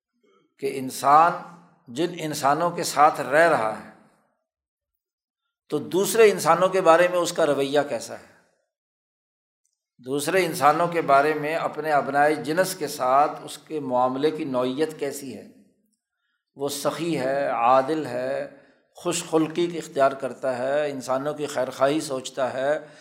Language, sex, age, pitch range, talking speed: Urdu, male, 60-79, 135-175 Hz, 140 wpm